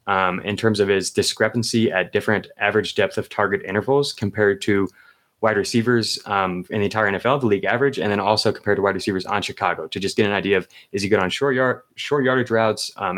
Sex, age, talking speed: male, 20-39, 230 wpm